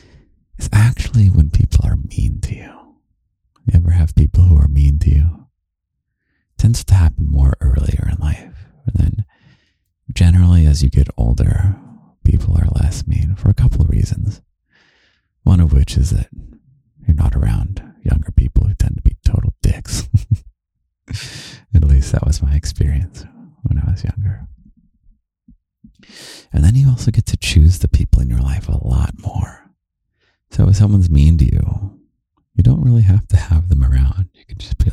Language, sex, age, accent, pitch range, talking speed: English, male, 40-59, American, 75-105 Hz, 170 wpm